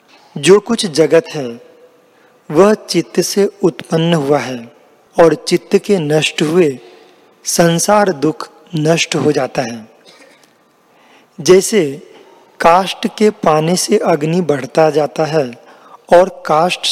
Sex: male